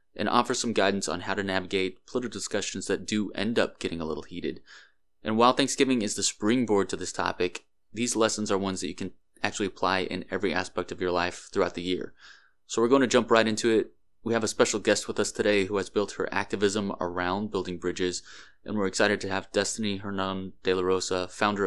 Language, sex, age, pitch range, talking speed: English, male, 20-39, 90-105 Hz, 220 wpm